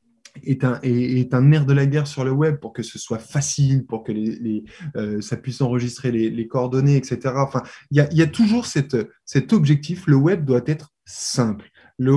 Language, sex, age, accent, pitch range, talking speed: French, male, 20-39, French, 120-145 Hz, 225 wpm